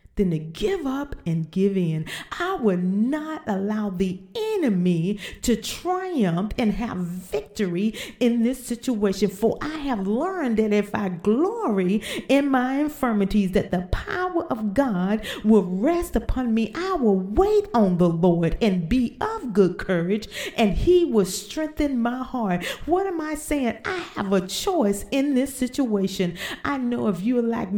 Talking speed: 160 wpm